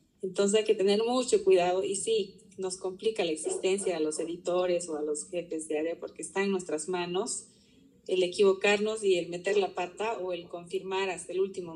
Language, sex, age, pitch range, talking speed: Spanish, female, 30-49, 185-225 Hz, 200 wpm